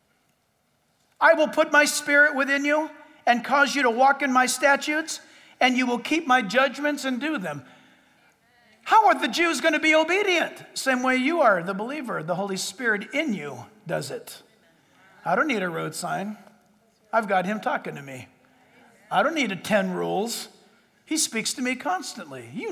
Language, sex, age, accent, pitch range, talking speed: English, male, 50-69, American, 215-285 Hz, 180 wpm